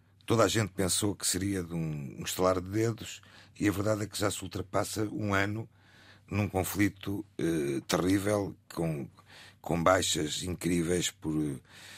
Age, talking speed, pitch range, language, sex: 50-69, 150 wpm, 95-115 Hz, Portuguese, male